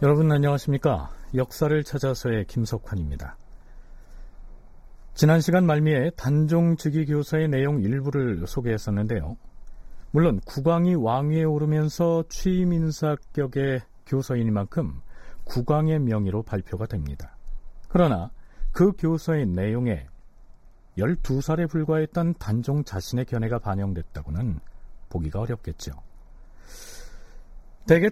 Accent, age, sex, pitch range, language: native, 40-59, male, 105-165 Hz, Korean